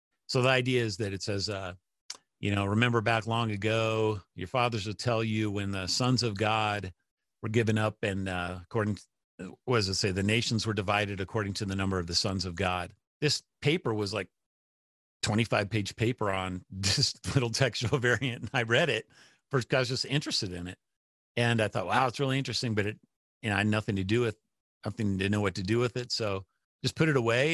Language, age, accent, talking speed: English, 40-59, American, 215 wpm